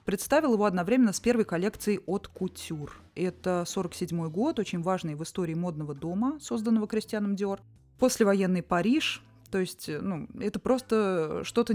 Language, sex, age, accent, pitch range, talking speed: Russian, female, 20-39, native, 165-225 Hz, 145 wpm